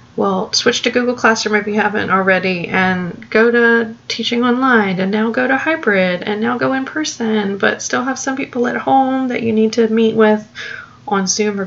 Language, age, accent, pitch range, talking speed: English, 30-49, American, 195-230 Hz, 205 wpm